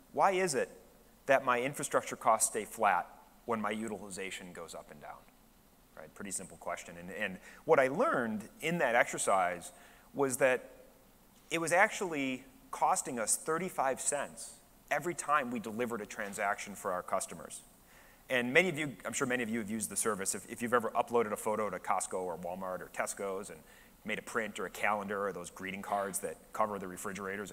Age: 30-49